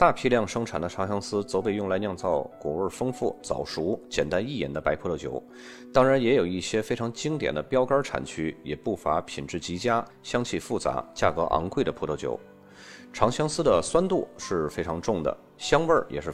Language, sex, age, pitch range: Chinese, male, 30-49, 80-125 Hz